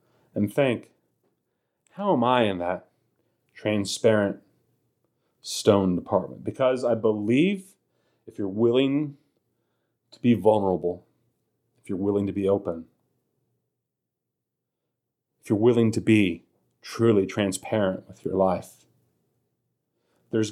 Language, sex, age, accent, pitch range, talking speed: English, male, 30-49, American, 100-125 Hz, 105 wpm